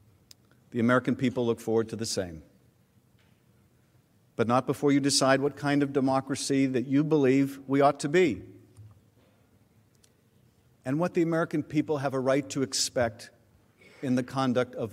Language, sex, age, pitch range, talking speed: English, male, 50-69, 110-140 Hz, 155 wpm